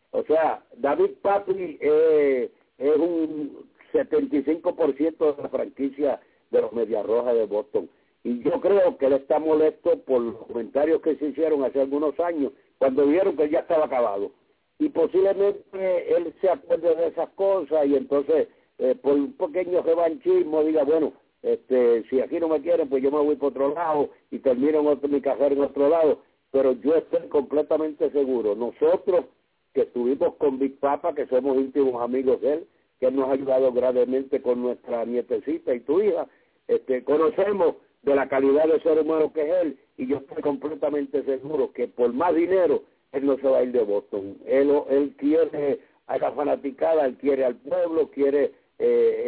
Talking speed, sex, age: 180 wpm, male, 60-79